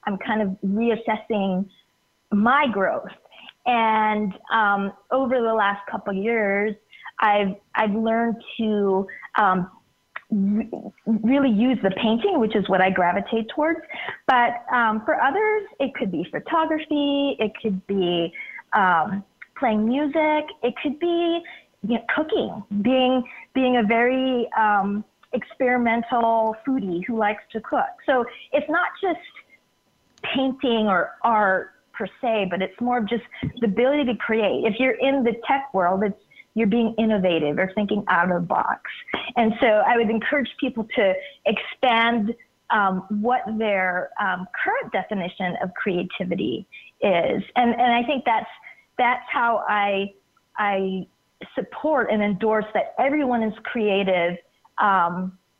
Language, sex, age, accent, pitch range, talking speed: English, female, 30-49, American, 200-255 Hz, 135 wpm